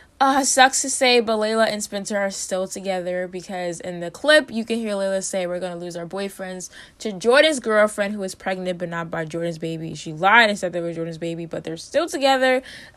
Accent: American